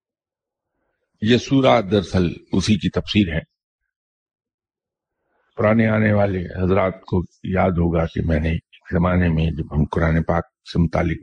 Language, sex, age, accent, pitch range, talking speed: English, male, 50-69, Indian, 85-110 Hz, 135 wpm